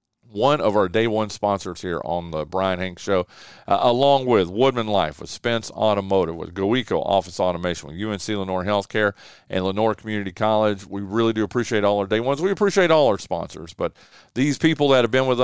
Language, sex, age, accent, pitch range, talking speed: English, male, 40-59, American, 100-150 Hz, 200 wpm